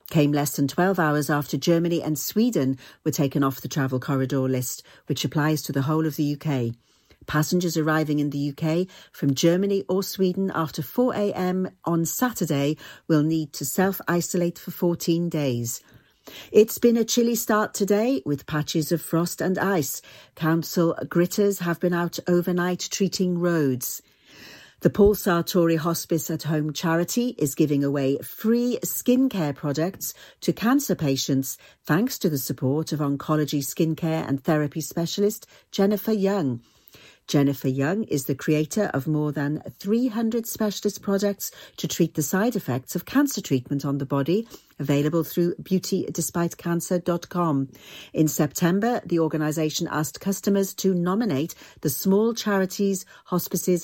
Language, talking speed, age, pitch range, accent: English, 145 wpm, 50-69, 150-195 Hz, British